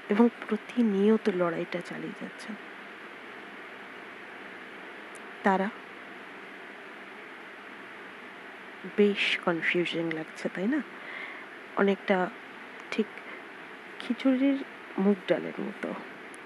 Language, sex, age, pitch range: Bengali, female, 30-49, 190-240 Hz